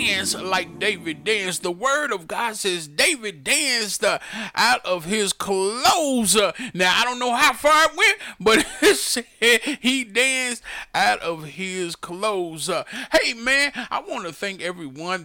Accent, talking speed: American, 155 wpm